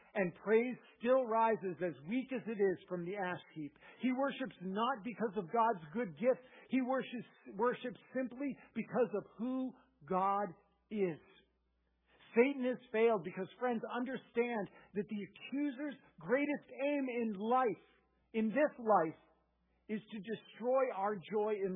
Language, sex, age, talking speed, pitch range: English, male, 50-69, 145 wpm, 170-230 Hz